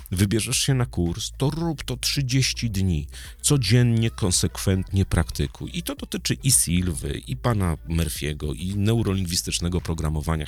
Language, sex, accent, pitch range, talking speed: Polish, male, native, 85-140 Hz, 130 wpm